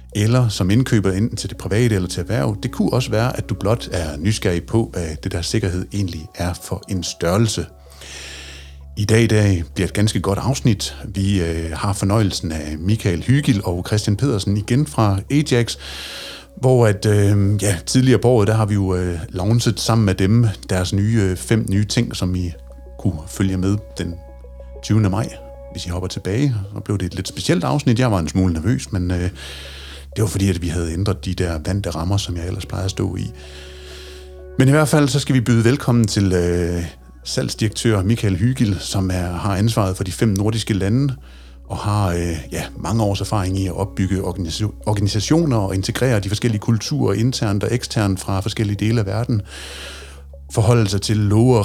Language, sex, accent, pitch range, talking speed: Danish, male, native, 90-115 Hz, 190 wpm